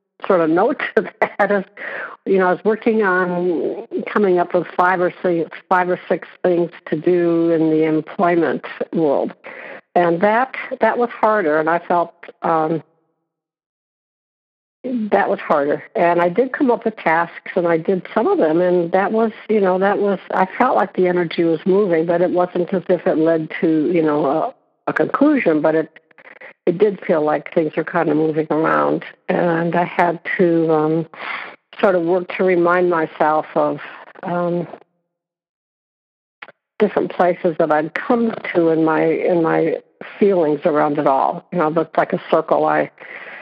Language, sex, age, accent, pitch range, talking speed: English, female, 60-79, American, 160-190 Hz, 175 wpm